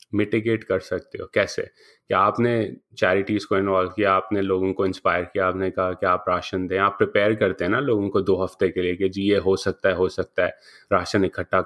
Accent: Indian